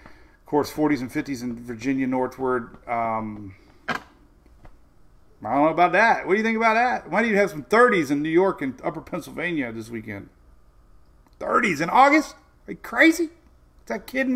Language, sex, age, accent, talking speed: English, male, 40-59, American, 180 wpm